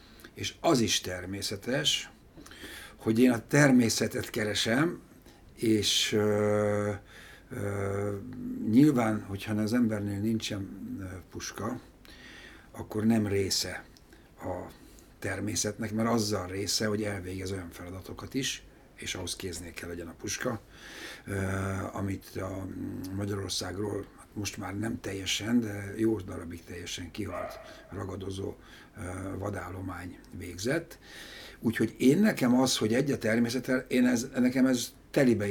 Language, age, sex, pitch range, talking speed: Hungarian, 60-79, male, 95-115 Hz, 110 wpm